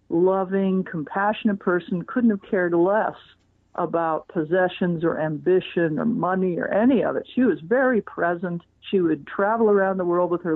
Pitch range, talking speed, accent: 175-225 Hz, 165 wpm, American